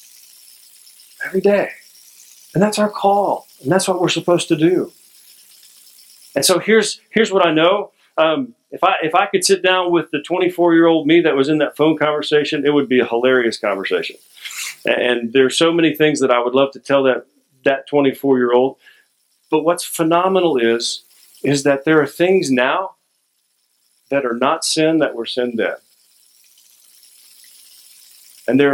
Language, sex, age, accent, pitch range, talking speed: English, male, 40-59, American, 140-175 Hz, 165 wpm